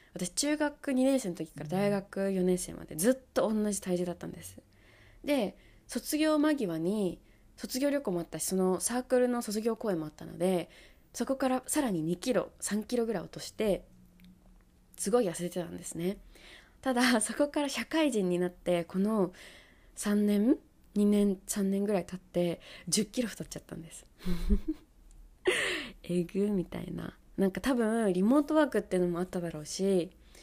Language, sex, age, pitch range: Japanese, female, 20-39, 170-220 Hz